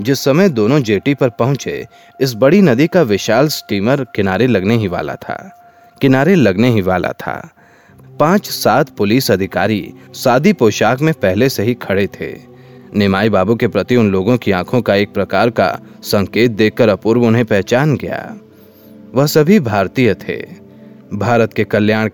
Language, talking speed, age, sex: Hindi, 160 wpm, 30-49, male